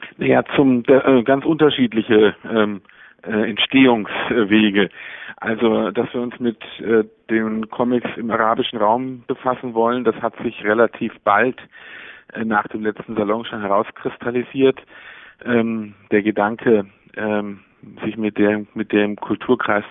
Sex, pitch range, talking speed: male, 100-115 Hz, 125 wpm